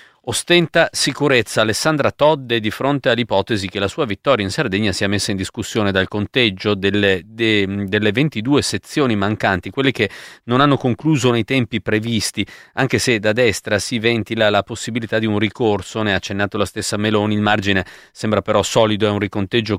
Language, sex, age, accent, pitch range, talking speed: Italian, male, 40-59, native, 95-115 Hz, 175 wpm